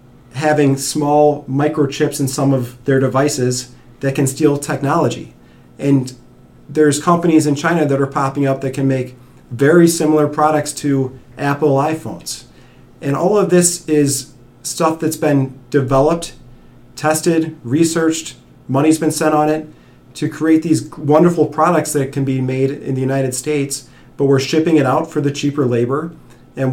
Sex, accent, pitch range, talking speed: male, American, 130-155 Hz, 155 wpm